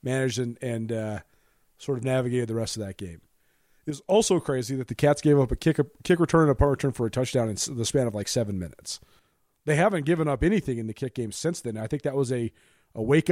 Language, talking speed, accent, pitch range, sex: English, 255 wpm, American, 115-150 Hz, male